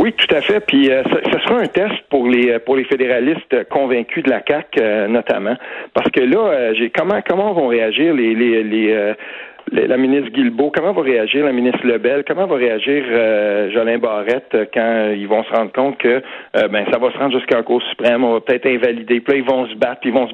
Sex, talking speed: male, 240 wpm